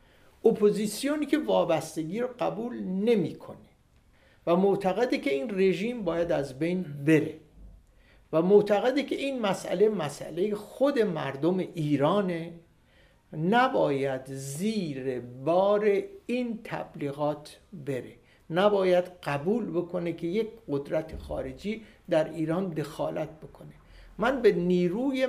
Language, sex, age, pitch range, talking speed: Persian, male, 60-79, 155-200 Hz, 105 wpm